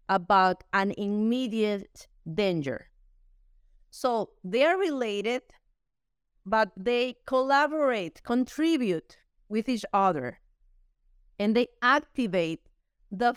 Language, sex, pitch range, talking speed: English, female, 205-265 Hz, 85 wpm